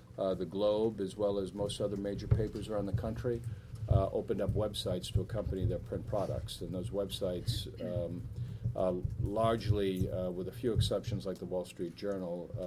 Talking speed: 180 wpm